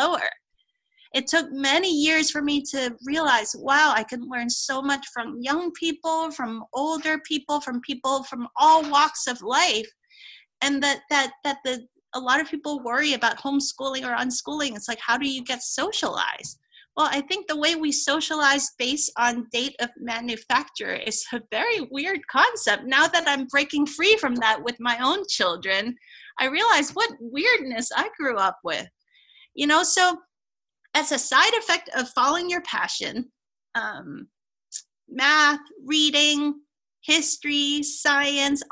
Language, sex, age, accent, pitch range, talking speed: English, female, 30-49, American, 240-315 Hz, 155 wpm